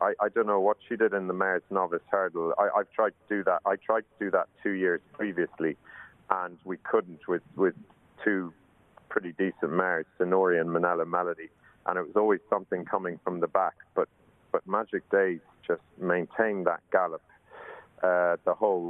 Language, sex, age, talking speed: English, male, 40-59, 185 wpm